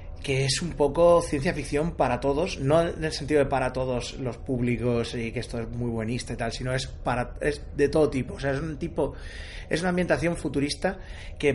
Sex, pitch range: male, 115-135 Hz